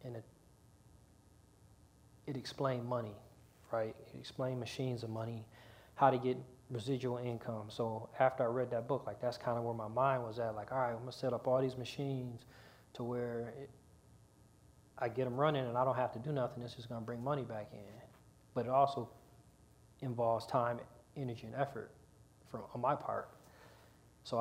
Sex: male